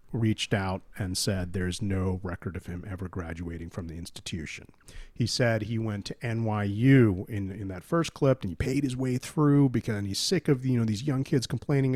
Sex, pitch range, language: male, 100-125 Hz, English